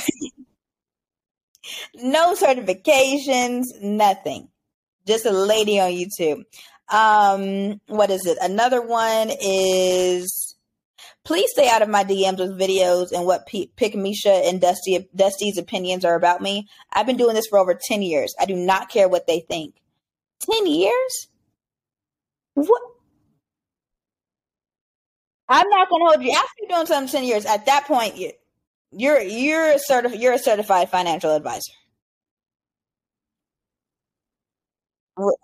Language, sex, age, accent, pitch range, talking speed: English, female, 20-39, American, 185-265 Hz, 130 wpm